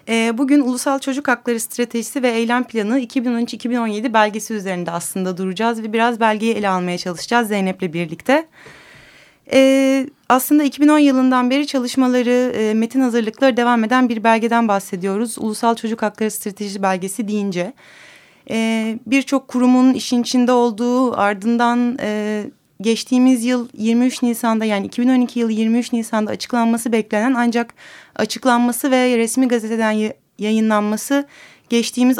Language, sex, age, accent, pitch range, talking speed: Turkish, female, 30-49, native, 215-245 Hz, 120 wpm